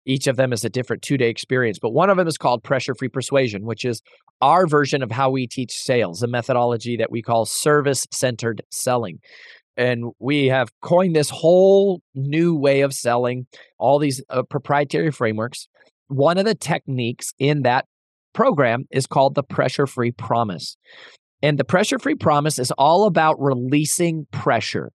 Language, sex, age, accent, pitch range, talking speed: English, male, 30-49, American, 125-165 Hz, 165 wpm